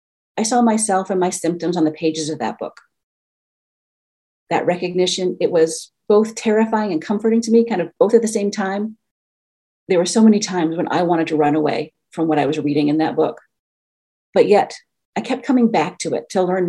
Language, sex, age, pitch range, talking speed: English, female, 40-59, 155-210 Hz, 210 wpm